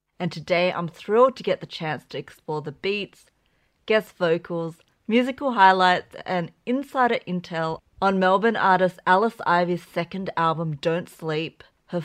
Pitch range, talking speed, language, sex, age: 160-205 Hz, 145 wpm, English, female, 30-49